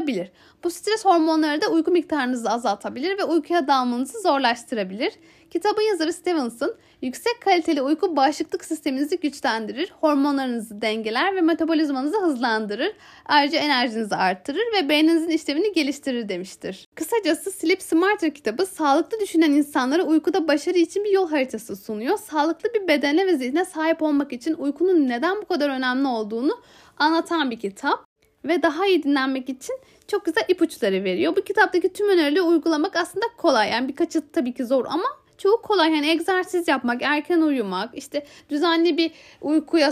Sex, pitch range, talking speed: female, 275-360 Hz, 145 wpm